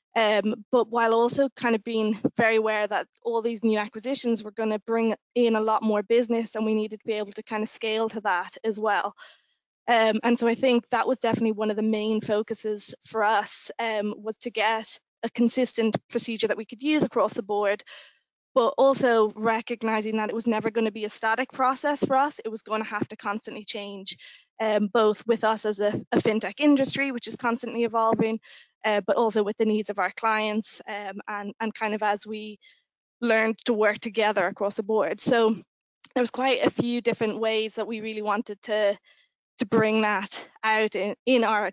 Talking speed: 205 wpm